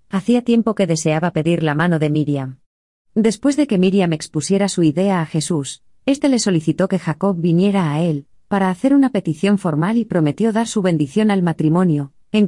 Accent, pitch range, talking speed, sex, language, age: Spanish, 155-205 Hz, 190 wpm, female, Spanish, 30-49